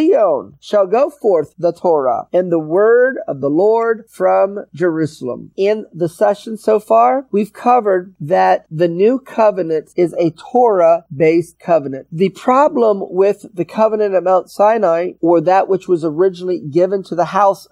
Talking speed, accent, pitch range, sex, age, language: 155 wpm, American, 170-225 Hz, male, 40-59, English